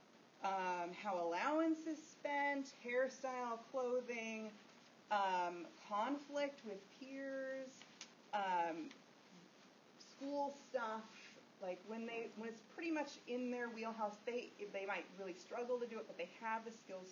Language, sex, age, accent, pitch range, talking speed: English, female, 30-49, American, 190-270 Hz, 130 wpm